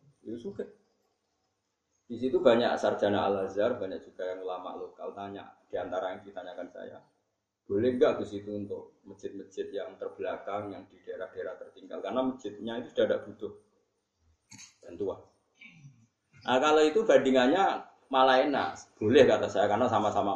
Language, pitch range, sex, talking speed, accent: Indonesian, 110-170 Hz, male, 140 wpm, native